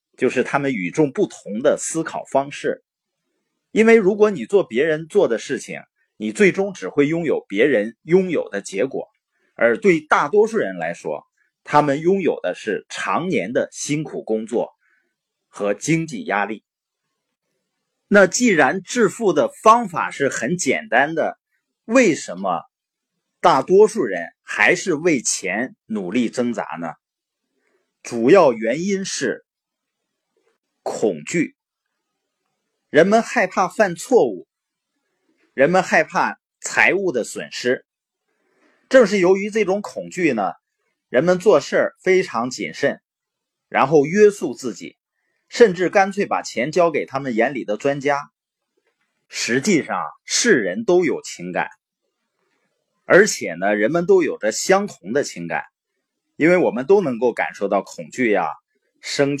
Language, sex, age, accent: Chinese, male, 30-49, native